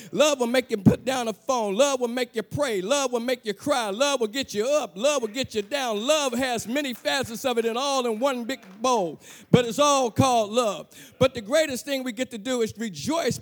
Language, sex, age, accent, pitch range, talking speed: English, male, 50-69, American, 195-245 Hz, 245 wpm